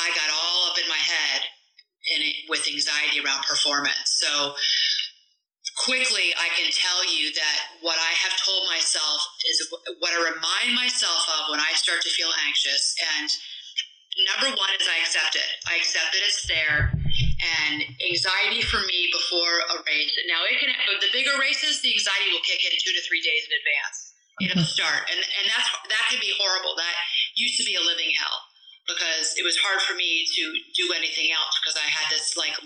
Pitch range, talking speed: 155-230 Hz, 190 wpm